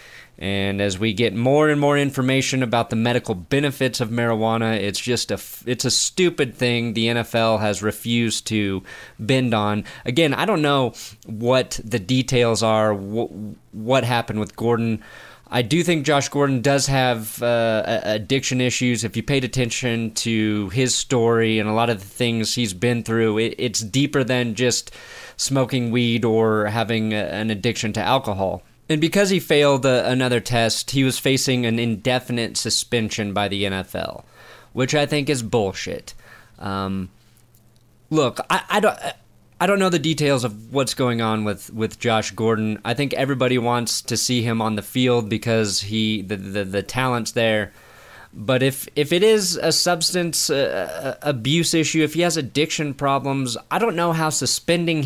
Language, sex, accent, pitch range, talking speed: English, male, American, 110-135 Hz, 165 wpm